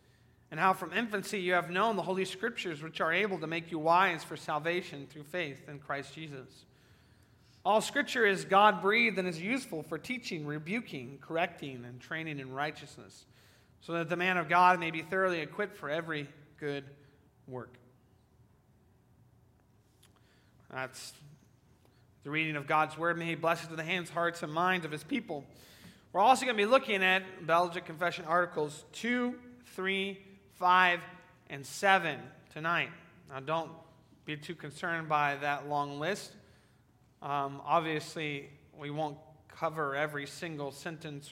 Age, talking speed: 30-49, 150 wpm